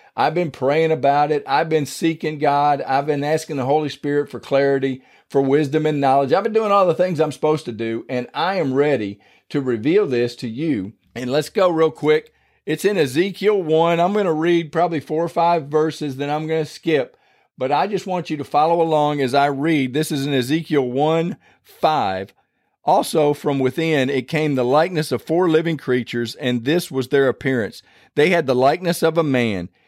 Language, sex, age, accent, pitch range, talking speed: English, male, 40-59, American, 125-160 Hz, 205 wpm